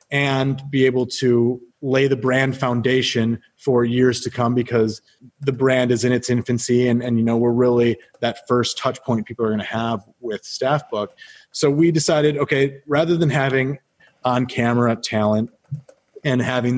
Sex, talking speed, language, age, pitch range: male, 175 wpm, English, 30-49, 120-140 Hz